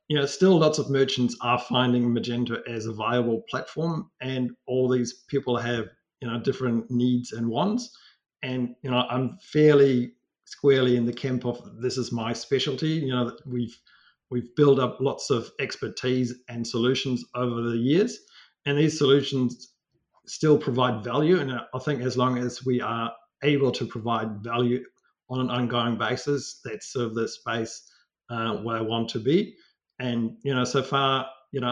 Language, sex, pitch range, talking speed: English, male, 115-135 Hz, 175 wpm